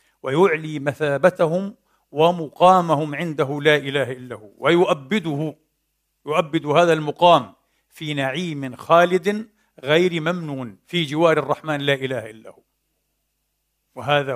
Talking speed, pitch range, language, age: 100 wpm, 130-155 Hz, Arabic, 50-69